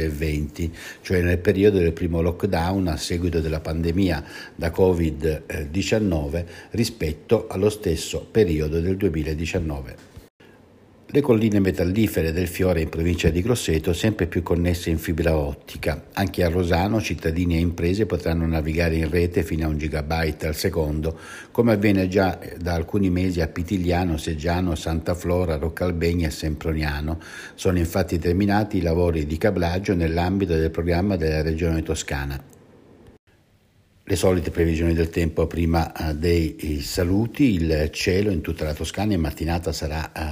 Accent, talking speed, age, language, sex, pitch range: native, 140 wpm, 60-79, Italian, male, 80-90 Hz